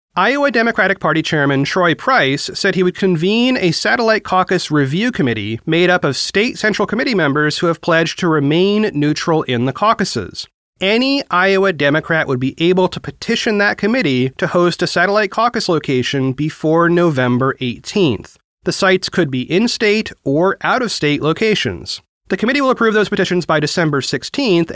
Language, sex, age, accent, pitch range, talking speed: English, male, 30-49, American, 145-200 Hz, 160 wpm